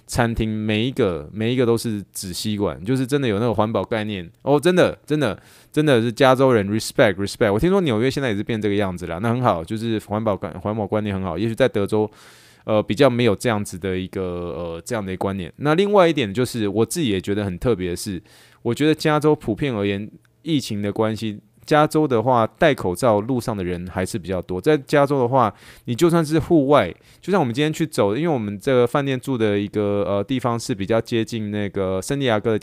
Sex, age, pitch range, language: male, 20-39, 100-130 Hz, Chinese